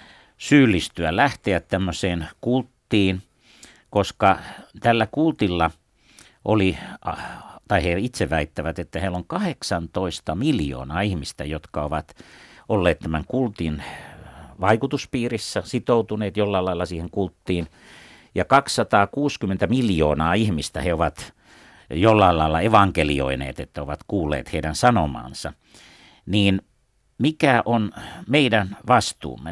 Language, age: Finnish, 60-79